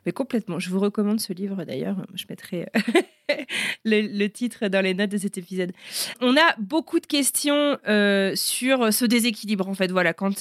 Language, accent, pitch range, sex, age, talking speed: French, French, 190-235 Hz, female, 30-49, 185 wpm